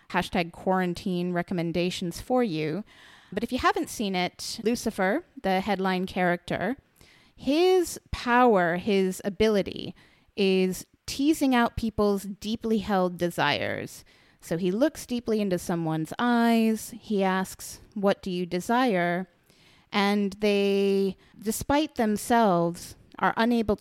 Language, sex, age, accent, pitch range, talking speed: English, female, 30-49, American, 185-235 Hz, 115 wpm